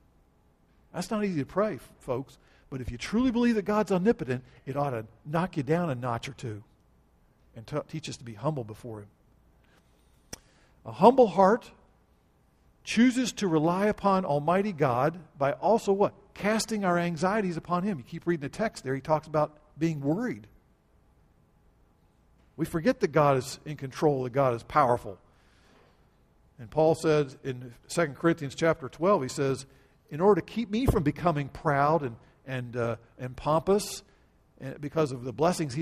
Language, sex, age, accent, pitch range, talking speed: English, male, 50-69, American, 130-185 Hz, 170 wpm